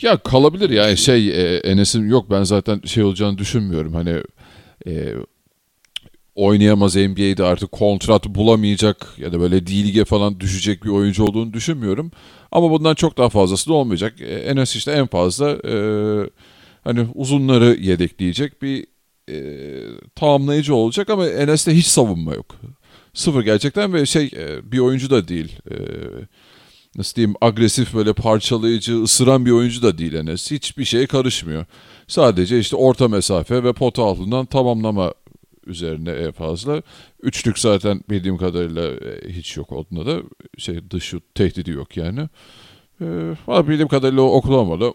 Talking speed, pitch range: 145 wpm, 95-130 Hz